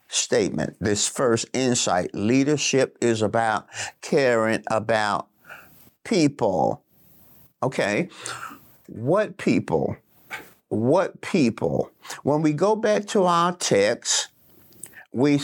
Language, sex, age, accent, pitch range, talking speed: English, male, 50-69, American, 120-170 Hz, 90 wpm